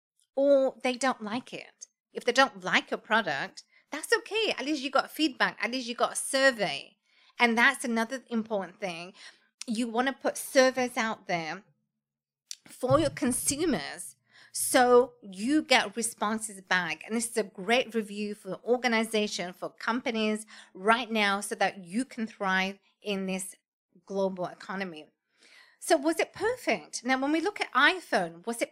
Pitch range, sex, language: 215-280 Hz, female, English